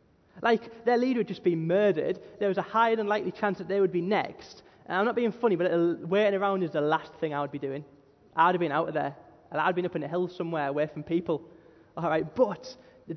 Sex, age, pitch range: male, 20-39, 145-195 Hz